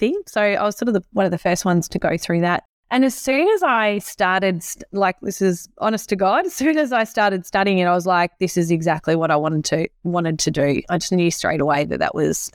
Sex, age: female, 20-39